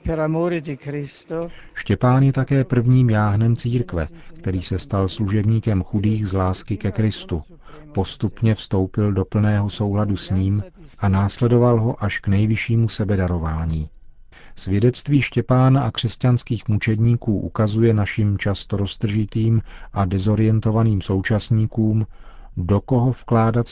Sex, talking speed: male, 110 wpm